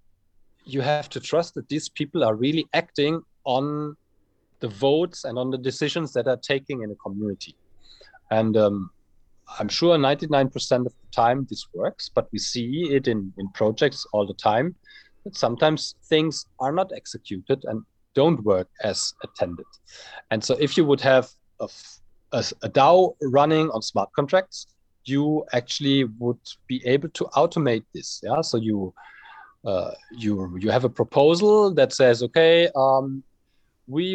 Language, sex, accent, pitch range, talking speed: English, male, German, 120-155 Hz, 160 wpm